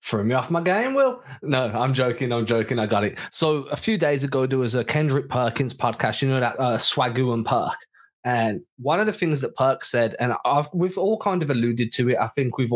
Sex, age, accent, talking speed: male, 20-39, British, 240 wpm